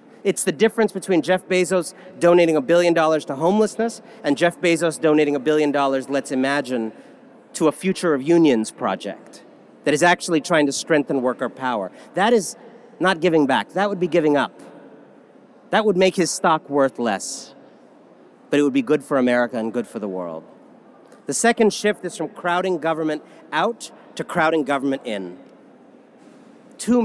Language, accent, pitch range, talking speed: English, American, 140-190 Hz, 170 wpm